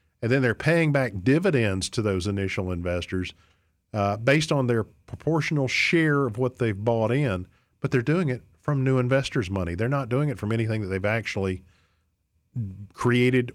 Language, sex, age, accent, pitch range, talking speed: English, male, 50-69, American, 95-135 Hz, 175 wpm